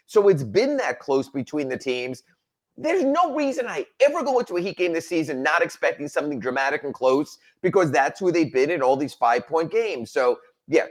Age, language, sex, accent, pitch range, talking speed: 30-49, English, male, American, 150-230 Hz, 210 wpm